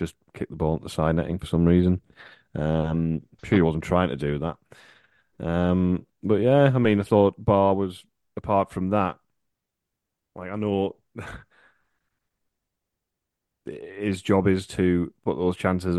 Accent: British